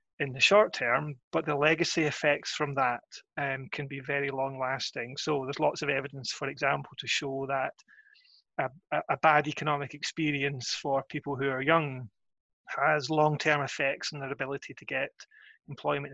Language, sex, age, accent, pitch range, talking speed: English, male, 30-49, British, 135-155 Hz, 170 wpm